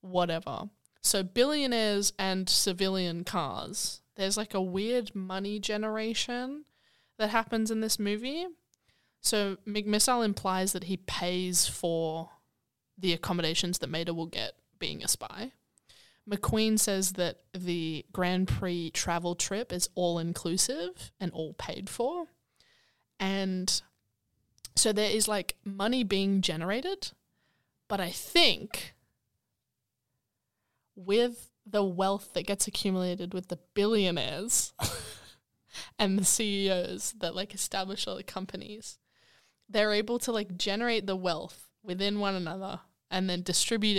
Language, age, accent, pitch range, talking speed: English, 20-39, Australian, 170-210 Hz, 120 wpm